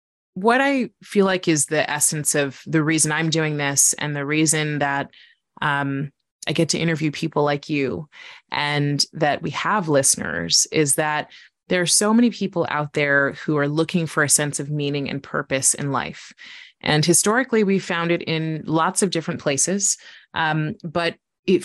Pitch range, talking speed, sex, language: 150-175 Hz, 175 wpm, female, English